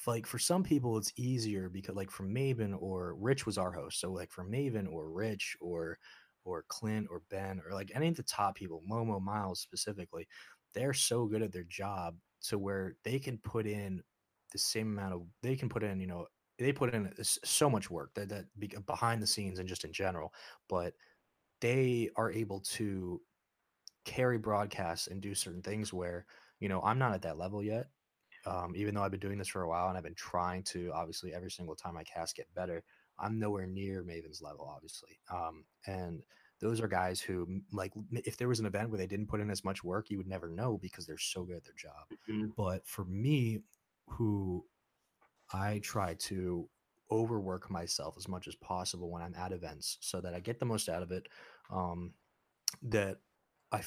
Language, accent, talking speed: English, American, 205 wpm